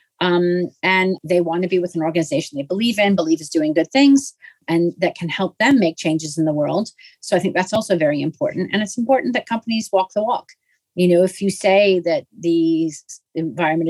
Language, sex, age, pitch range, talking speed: English, female, 40-59, 165-190 Hz, 215 wpm